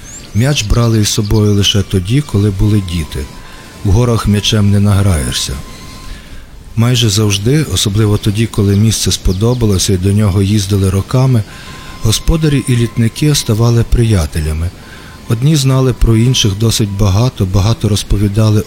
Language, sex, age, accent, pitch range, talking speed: Ukrainian, male, 50-69, native, 95-115 Hz, 125 wpm